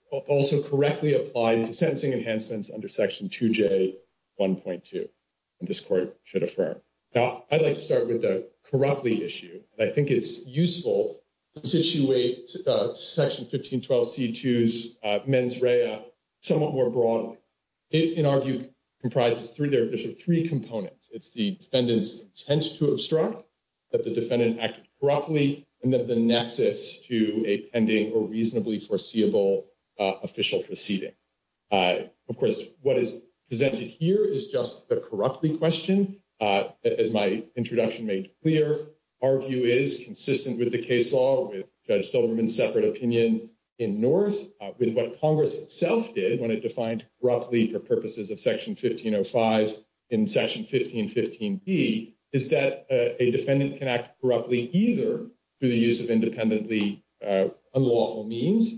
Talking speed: 145 wpm